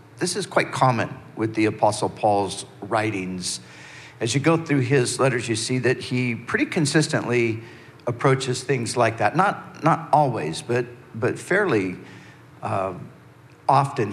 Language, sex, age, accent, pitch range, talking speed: English, male, 50-69, American, 110-135 Hz, 140 wpm